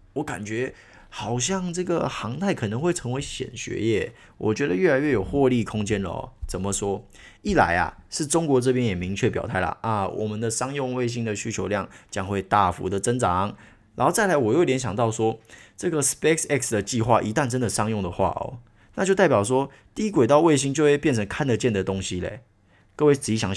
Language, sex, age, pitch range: Chinese, male, 20-39, 100-135 Hz